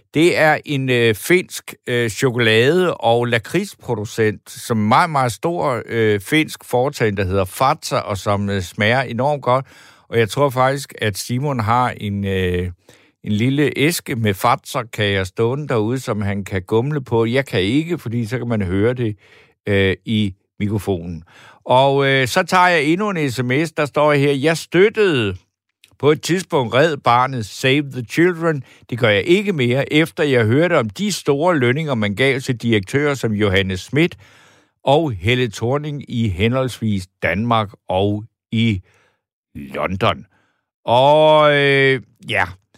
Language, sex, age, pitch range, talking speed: Danish, male, 60-79, 110-145 Hz, 160 wpm